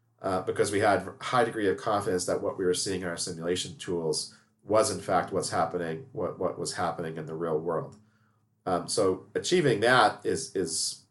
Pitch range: 90-135 Hz